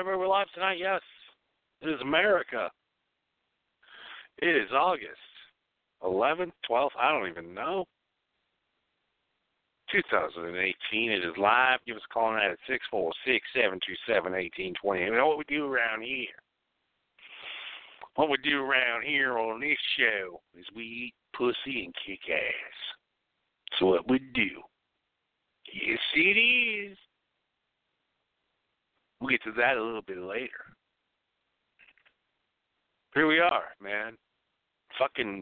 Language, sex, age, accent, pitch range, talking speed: English, male, 50-69, American, 110-175 Hz, 120 wpm